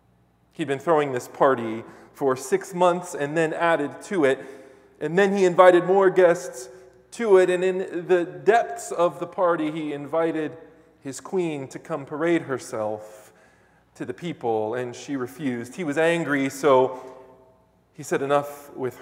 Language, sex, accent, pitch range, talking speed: English, male, American, 125-165 Hz, 160 wpm